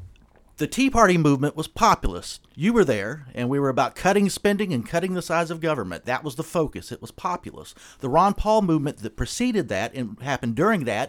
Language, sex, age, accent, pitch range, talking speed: English, male, 40-59, American, 130-180 Hz, 210 wpm